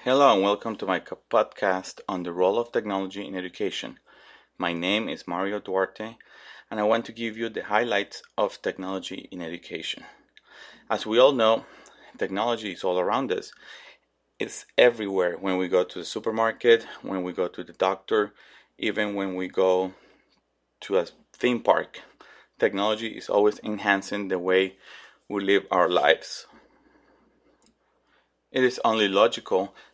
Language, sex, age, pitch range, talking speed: English, male, 30-49, 95-110 Hz, 150 wpm